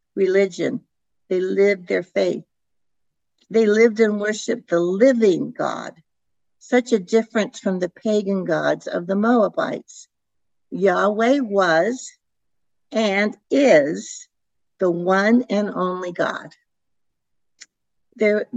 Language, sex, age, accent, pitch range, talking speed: English, female, 60-79, American, 180-225 Hz, 105 wpm